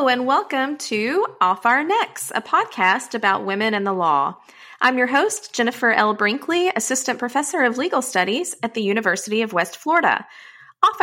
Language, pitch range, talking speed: English, 190-270 Hz, 175 wpm